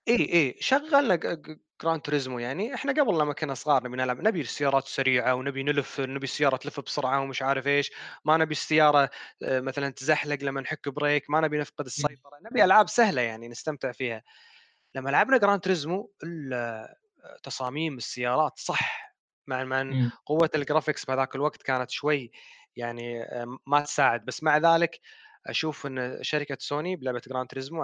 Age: 20-39